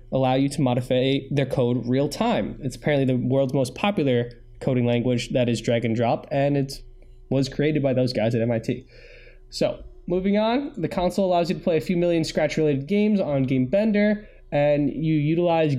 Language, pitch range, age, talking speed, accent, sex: English, 130-175 Hz, 20-39, 195 wpm, American, male